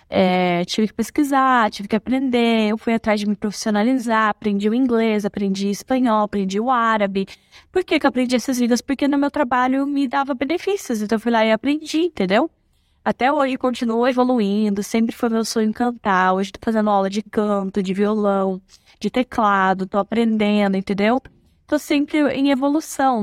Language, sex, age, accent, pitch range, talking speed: Portuguese, female, 10-29, Brazilian, 200-265 Hz, 175 wpm